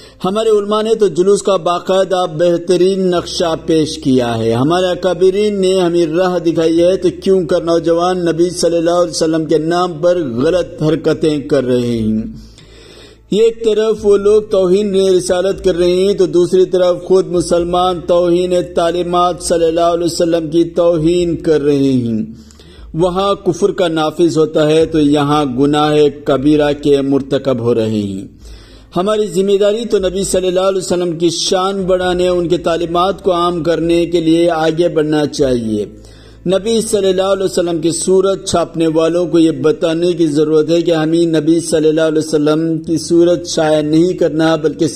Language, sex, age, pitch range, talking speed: Urdu, male, 50-69, 155-185 Hz, 170 wpm